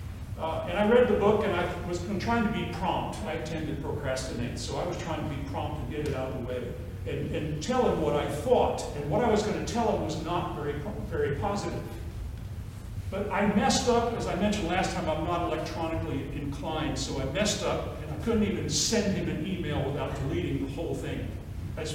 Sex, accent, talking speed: male, American, 225 wpm